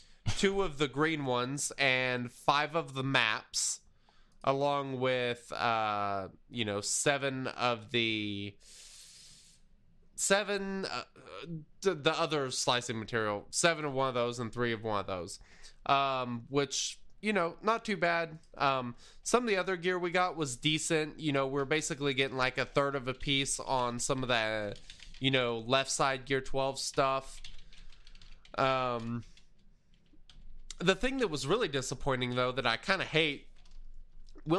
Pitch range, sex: 115-150 Hz, male